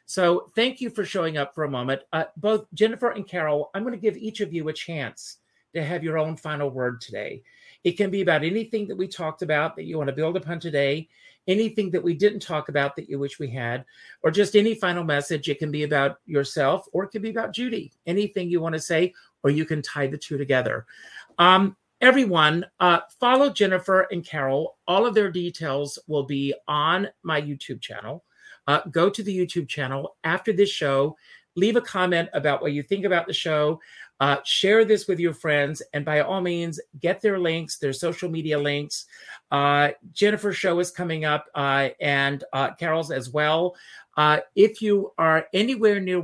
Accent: American